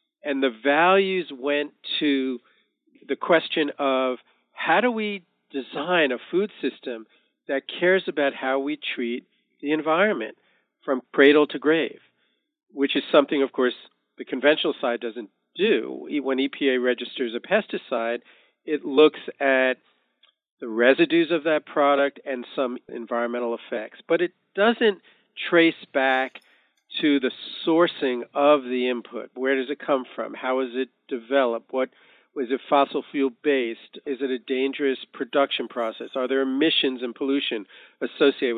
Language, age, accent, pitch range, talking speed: English, 50-69, American, 130-165 Hz, 145 wpm